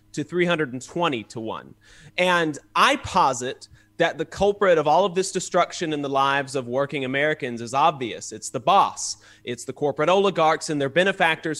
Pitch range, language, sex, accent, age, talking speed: 140-180 Hz, English, male, American, 30-49, 170 wpm